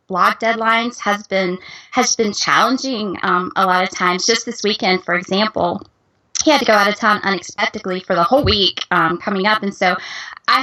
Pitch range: 185-230 Hz